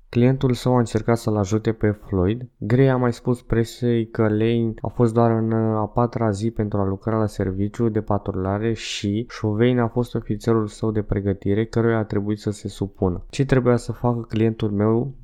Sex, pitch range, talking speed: male, 105-115 Hz, 195 wpm